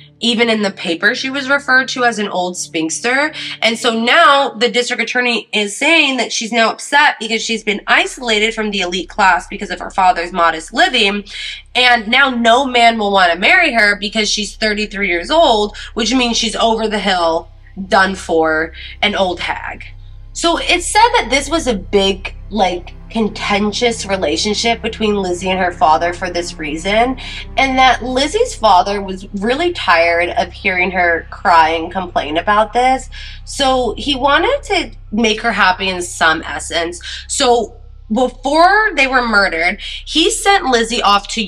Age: 20-39